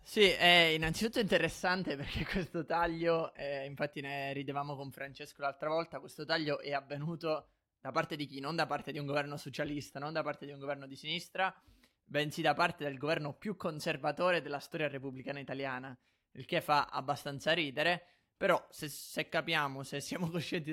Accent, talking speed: native, 180 wpm